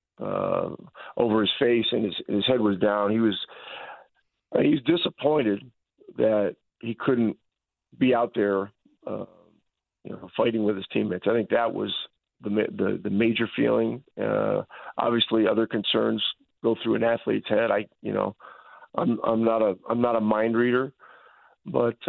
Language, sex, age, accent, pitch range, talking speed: English, male, 40-59, American, 105-120 Hz, 160 wpm